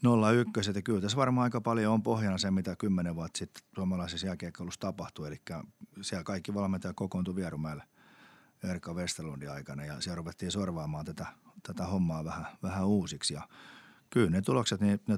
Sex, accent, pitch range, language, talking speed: male, native, 90-115 Hz, Finnish, 160 wpm